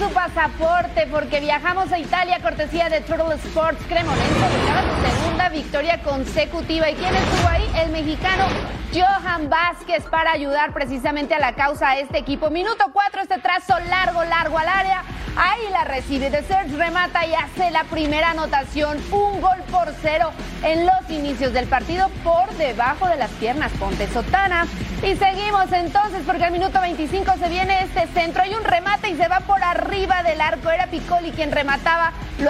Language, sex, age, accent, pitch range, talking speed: Spanish, female, 30-49, Mexican, 300-370 Hz, 175 wpm